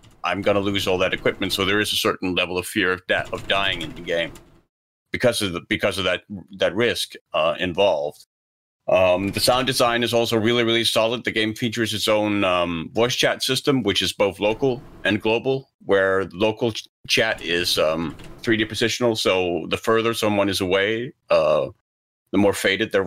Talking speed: 195 wpm